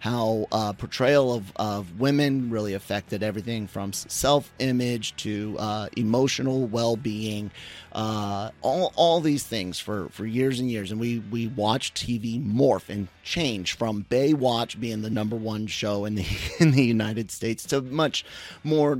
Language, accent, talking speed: English, American, 155 wpm